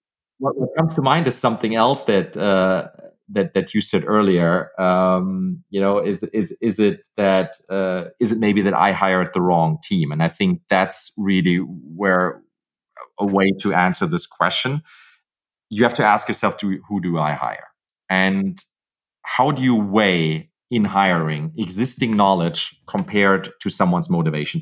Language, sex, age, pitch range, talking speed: English, male, 30-49, 95-125 Hz, 165 wpm